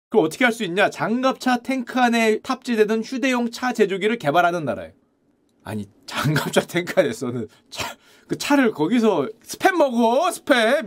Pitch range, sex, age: 170-265 Hz, male, 30-49